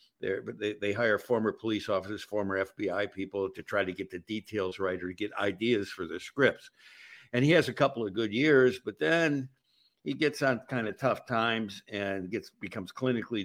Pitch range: 100-130 Hz